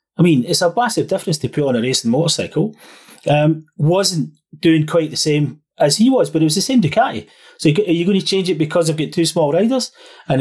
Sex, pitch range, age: male, 130-180 Hz, 30-49